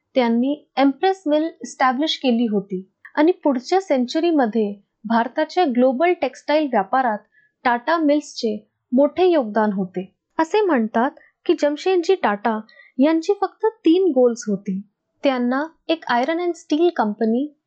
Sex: female